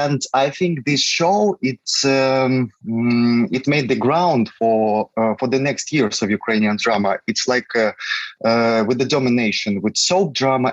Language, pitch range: English, 110-135 Hz